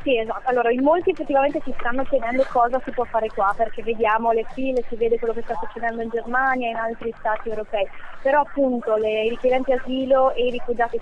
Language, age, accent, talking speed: Italian, 20-39, native, 215 wpm